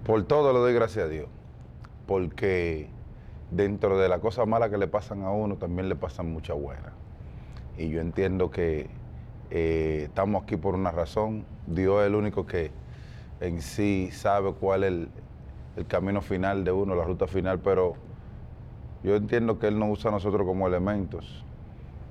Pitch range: 90-110 Hz